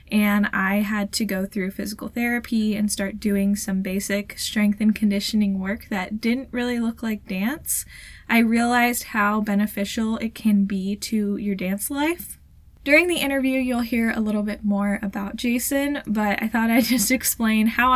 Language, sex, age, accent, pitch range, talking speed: English, female, 10-29, American, 205-240 Hz, 175 wpm